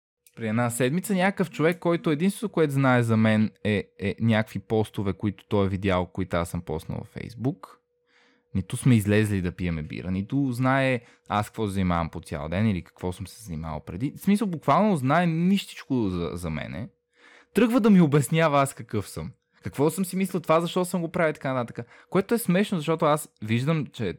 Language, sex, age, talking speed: Bulgarian, male, 20-39, 195 wpm